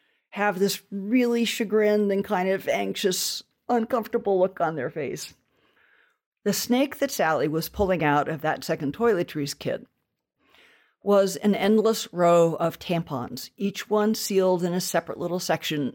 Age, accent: 50-69, American